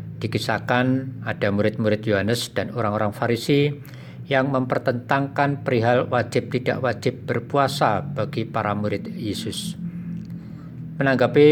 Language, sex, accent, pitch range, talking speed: Indonesian, male, native, 110-130 Hz, 95 wpm